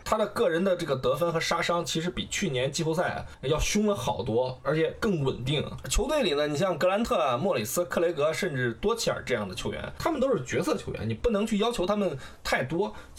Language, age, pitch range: Chinese, 20-39, 135-200 Hz